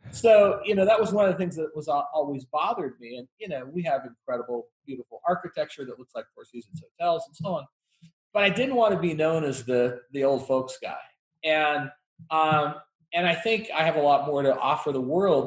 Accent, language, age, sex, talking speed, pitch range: American, English, 40-59, male, 230 wpm, 135-180 Hz